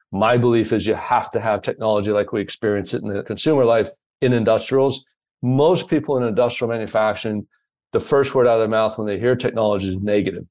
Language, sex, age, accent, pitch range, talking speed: English, male, 40-59, American, 100-120 Hz, 205 wpm